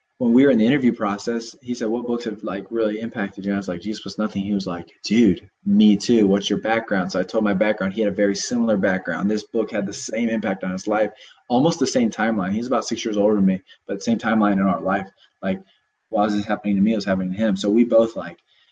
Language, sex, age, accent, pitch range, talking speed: English, male, 20-39, American, 100-115 Hz, 275 wpm